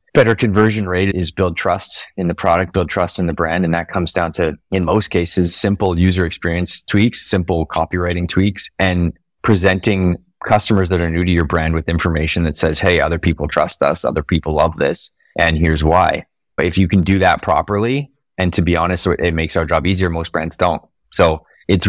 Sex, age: male, 20-39